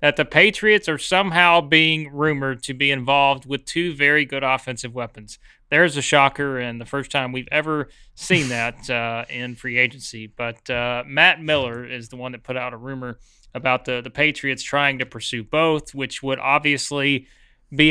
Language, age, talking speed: English, 30-49, 185 wpm